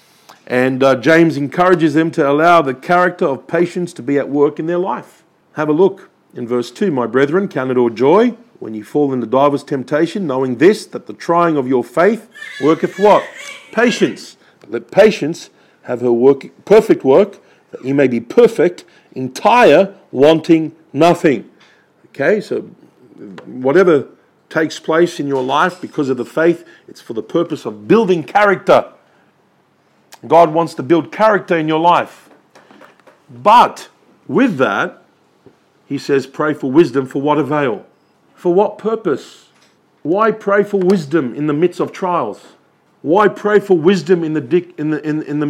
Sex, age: male, 50-69